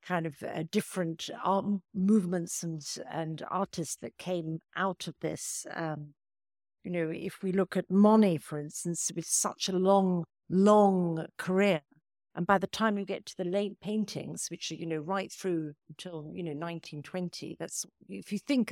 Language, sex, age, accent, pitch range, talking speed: English, female, 50-69, British, 160-190 Hz, 175 wpm